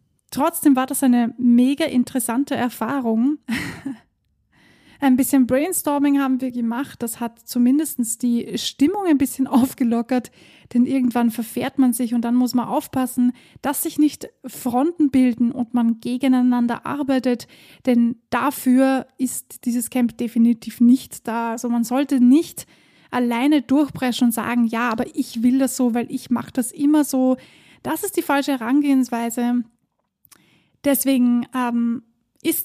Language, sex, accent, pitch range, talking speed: German, female, German, 240-275 Hz, 140 wpm